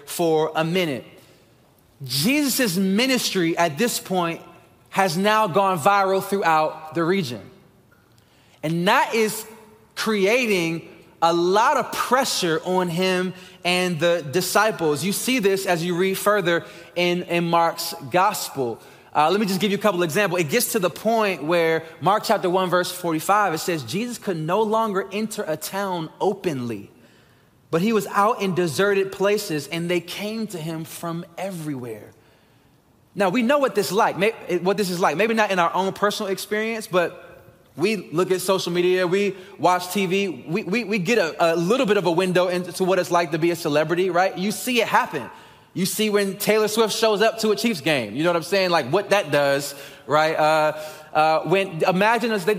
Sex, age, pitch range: male, 20-39, 170-210 Hz